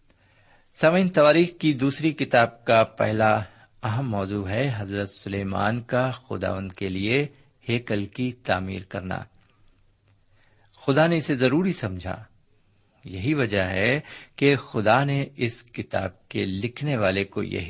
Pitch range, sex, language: 100-125 Hz, male, Urdu